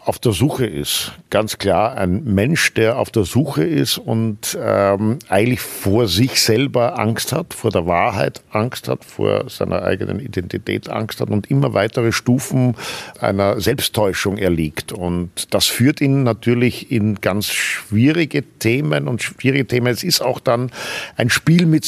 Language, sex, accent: German, male, German